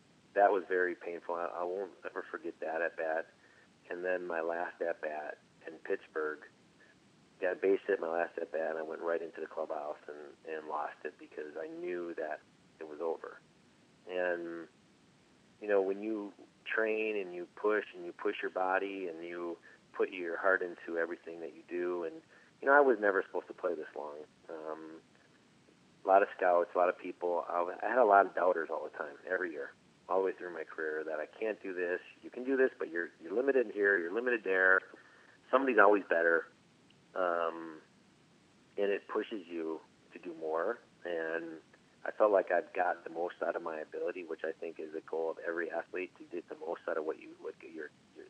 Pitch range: 85-110 Hz